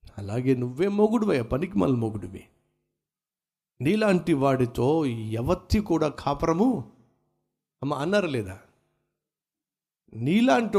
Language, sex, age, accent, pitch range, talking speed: Telugu, male, 60-79, native, 130-165 Hz, 80 wpm